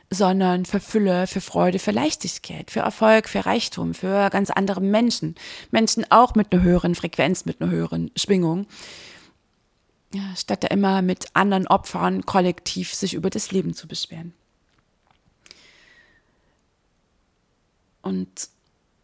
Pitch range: 160-190 Hz